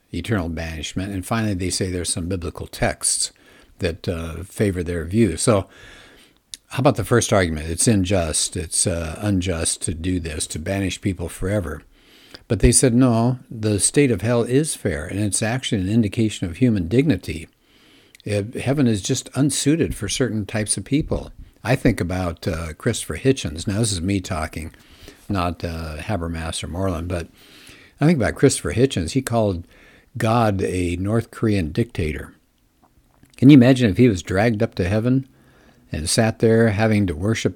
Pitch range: 90-115 Hz